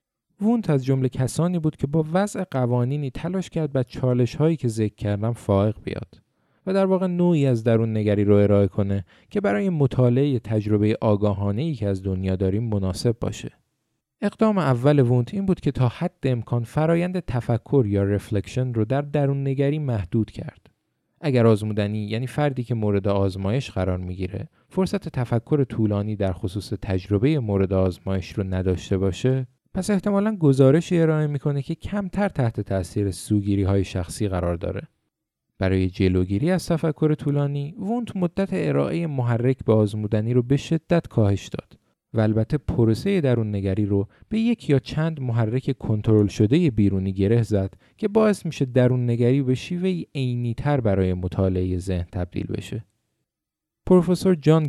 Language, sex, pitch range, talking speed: Persian, male, 105-150 Hz, 155 wpm